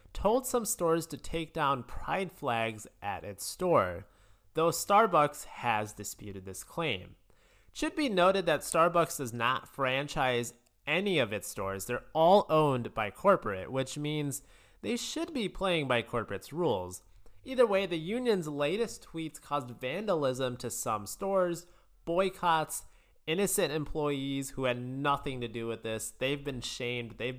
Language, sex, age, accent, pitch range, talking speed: English, male, 30-49, American, 120-175 Hz, 150 wpm